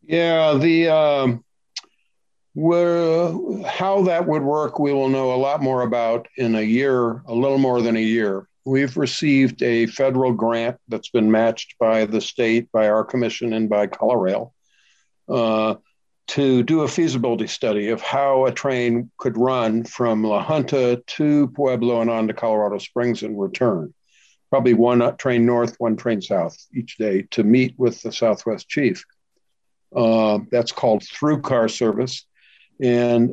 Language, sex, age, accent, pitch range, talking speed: English, male, 60-79, American, 115-135 Hz, 155 wpm